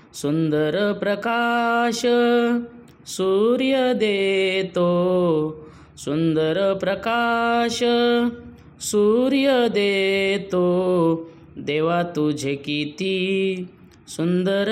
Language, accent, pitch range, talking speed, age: Marathi, native, 160-215 Hz, 50 wpm, 20-39